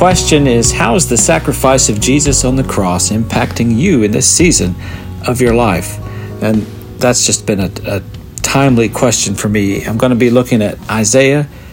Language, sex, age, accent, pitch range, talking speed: English, male, 50-69, American, 105-135 Hz, 185 wpm